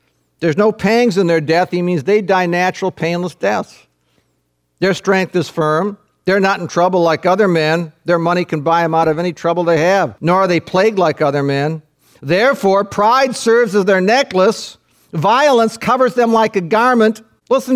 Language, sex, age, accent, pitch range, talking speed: English, male, 50-69, American, 180-250 Hz, 185 wpm